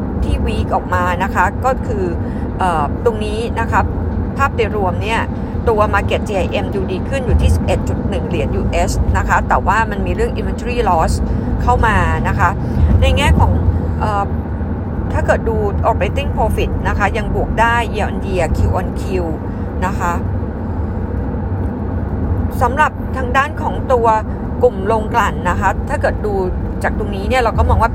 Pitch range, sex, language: 85-95 Hz, female, Thai